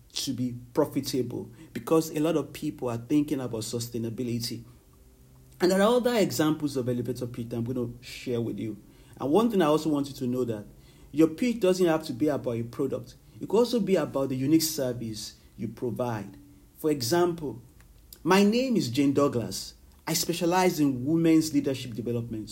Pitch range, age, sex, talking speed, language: 115-155 Hz, 40-59, male, 180 wpm, English